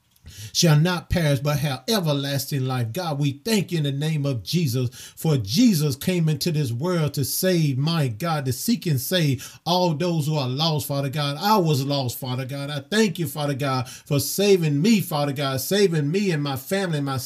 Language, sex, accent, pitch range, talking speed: English, male, American, 140-185 Hz, 200 wpm